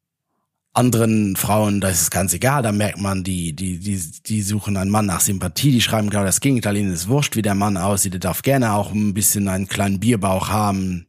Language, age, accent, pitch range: German, 30-49, German, 95-120 Hz